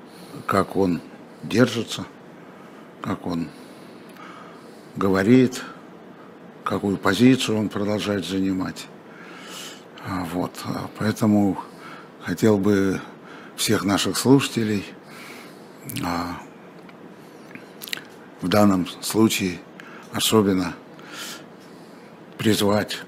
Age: 60-79